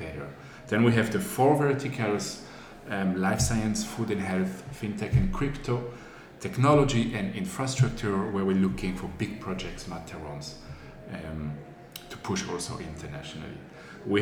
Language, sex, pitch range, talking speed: English, male, 95-115 Hz, 130 wpm